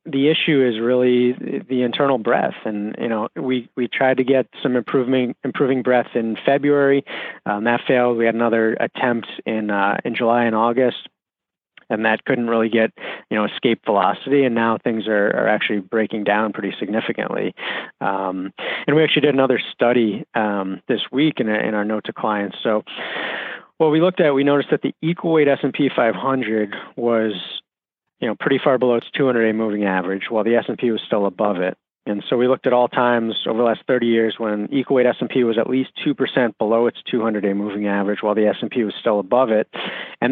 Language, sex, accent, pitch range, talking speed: English, male, American, 110-130 Hz, 200 wpm